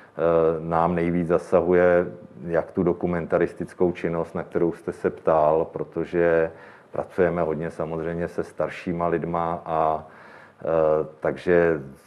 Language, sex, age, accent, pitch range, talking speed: Czech, male, 40-59, native, 80-85 Hz, 105 wpm